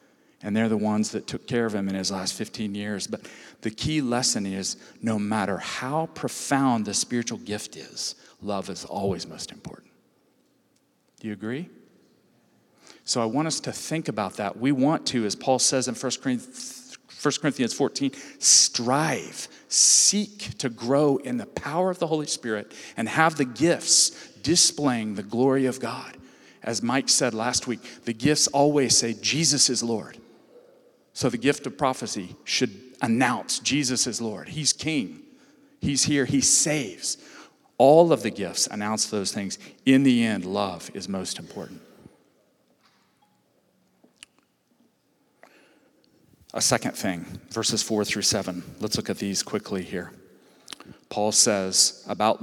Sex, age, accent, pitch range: male, 40-59, American, 110-155 Hz